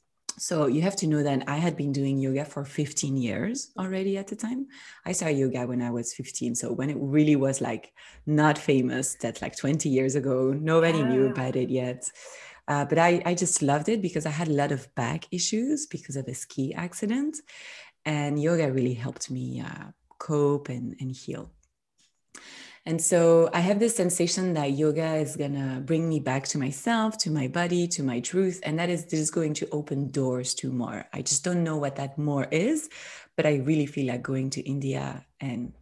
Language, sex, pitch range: English, female, 135-175 Hz